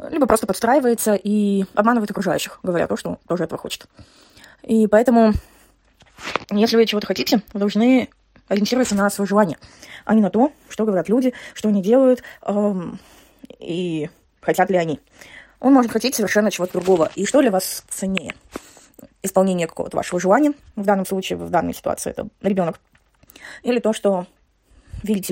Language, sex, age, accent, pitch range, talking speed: Russian, female, 20-39, native, 195-245 Hz, 155 wpm